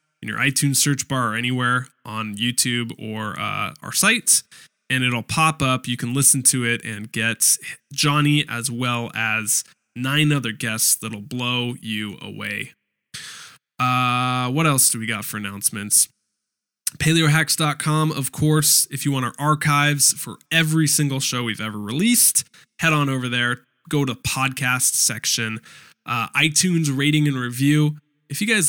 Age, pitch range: 10-29, 120-150 Hz